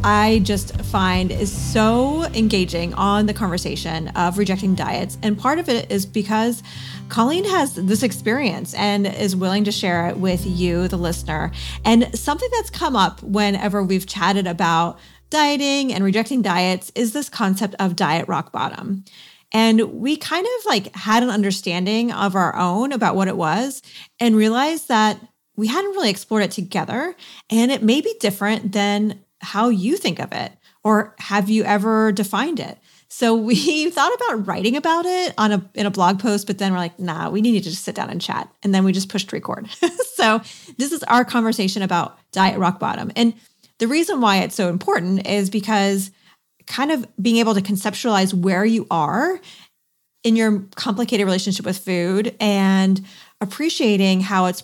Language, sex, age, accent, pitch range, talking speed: English, female, 30-49, American, 190-230 Hz, 180 wpm